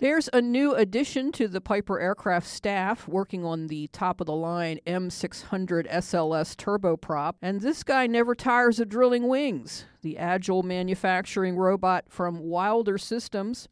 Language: English